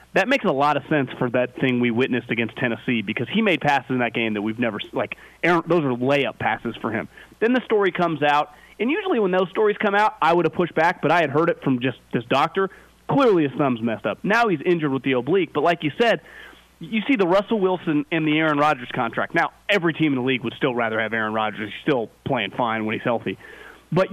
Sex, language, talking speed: male, English, 255 wpm